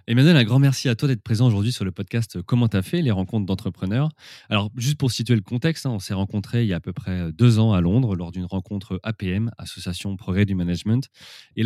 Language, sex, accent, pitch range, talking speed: French, male, French, 95-125 Hz, 245 wpm